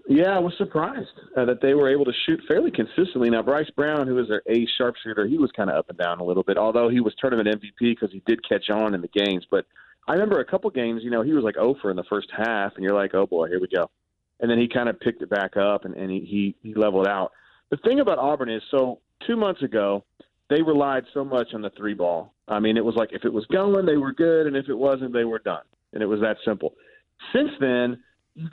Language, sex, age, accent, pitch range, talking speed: English, male, 40-59, American, 110-150 Hz, 270 wpm